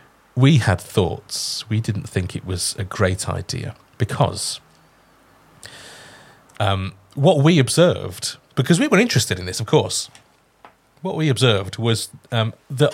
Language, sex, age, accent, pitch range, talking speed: English, male, 30-49, British, 110-175 Hz, 140 wpm